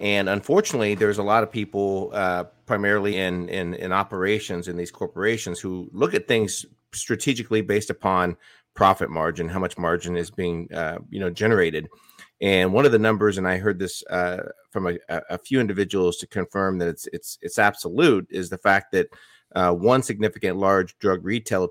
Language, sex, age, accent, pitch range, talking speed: English, male, 30-49, American, 90-110 Hz, 180 wpm